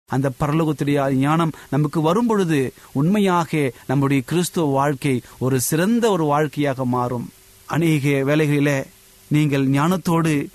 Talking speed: 100 wpm